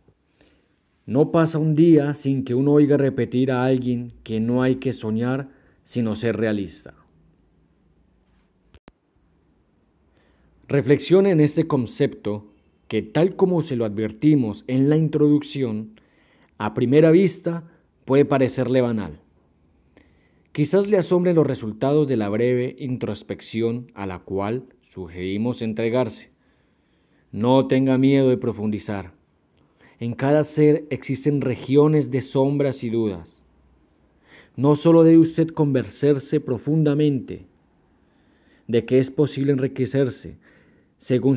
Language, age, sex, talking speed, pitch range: Spanish, 40-59, male, 115 wpm, 110-145 Hz